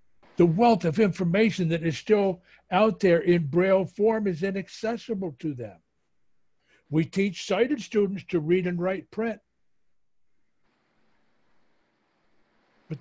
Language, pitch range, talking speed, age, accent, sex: English, 155-195 Hz, 120 wpm, 60-79, American, male